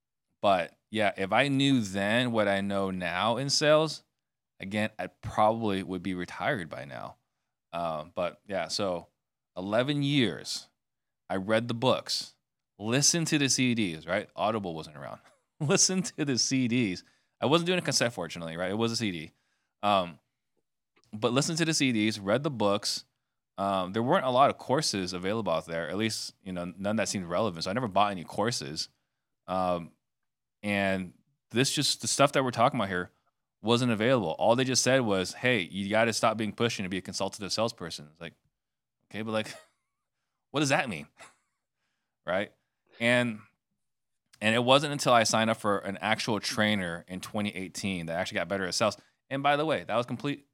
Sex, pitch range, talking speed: male, 95-130 Hz, 185 wpm